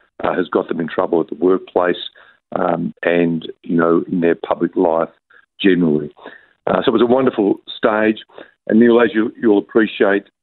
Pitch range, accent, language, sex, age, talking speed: 90-105 Hz, Australian, English, male, 50-69, 175 wpm